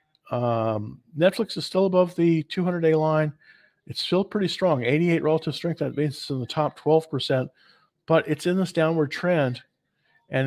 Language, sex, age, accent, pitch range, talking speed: English, male, 50-69, American, 130-165 Hz, 180 wpm